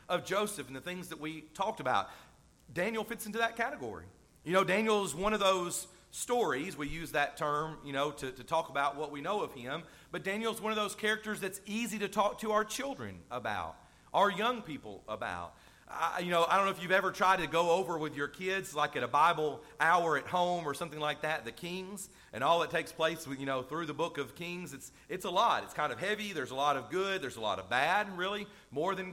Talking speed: 245 wpm